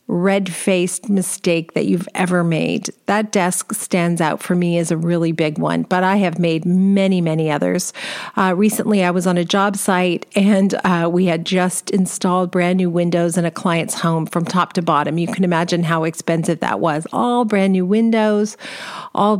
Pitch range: 175-205 Hz